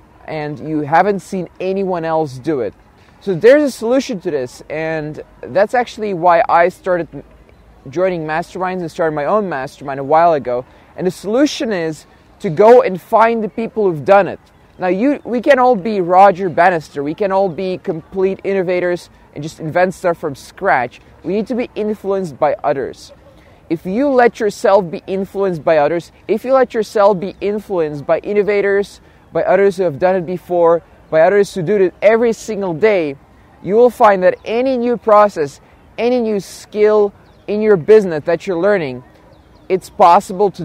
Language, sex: English, male